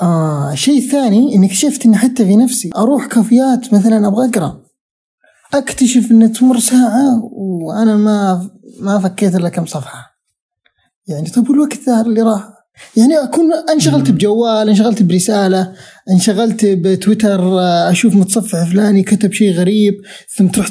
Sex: male